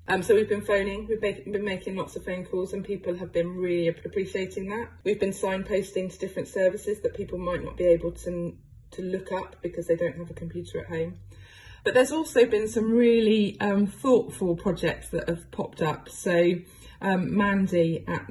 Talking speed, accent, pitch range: 200 wpm, British, 160-190 Hz